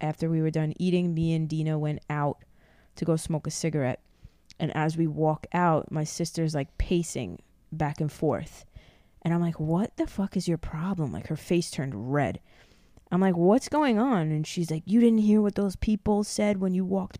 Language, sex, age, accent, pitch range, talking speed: English, female, 20-39, American, 155-195 Hz, 205 wpm